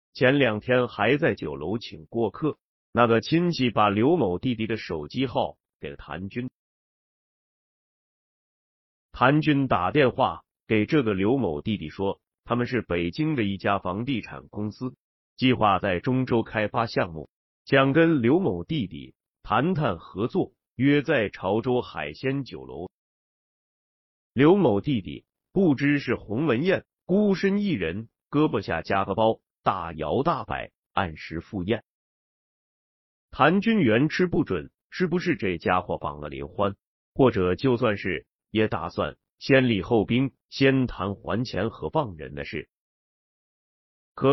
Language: Chinese